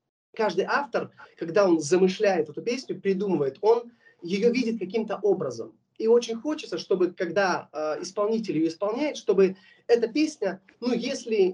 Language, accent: Russian, native